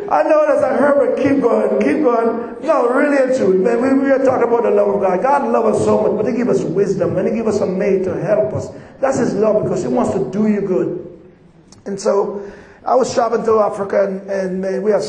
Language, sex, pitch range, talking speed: English, male, 180-220 Hz, 260 wpm